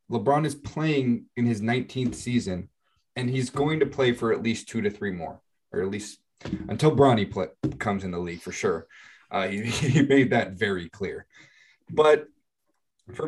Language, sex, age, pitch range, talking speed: English, male, 20-39, 100-130 Hz, 175 wpm